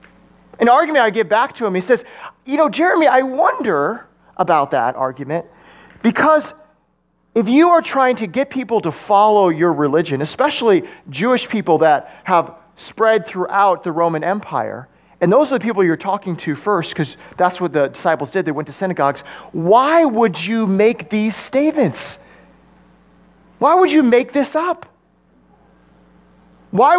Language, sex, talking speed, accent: English, male, 160 wpm, American